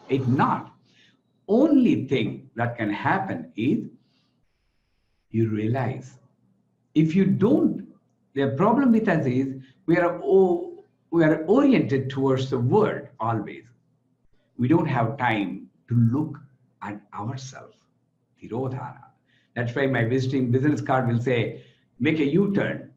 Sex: male